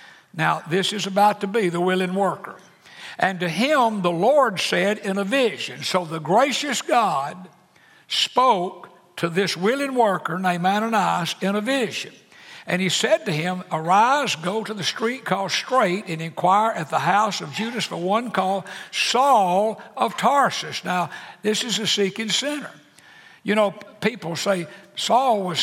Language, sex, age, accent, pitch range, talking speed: English, male, 60-79, American, 180-215 Hz, 160 wpm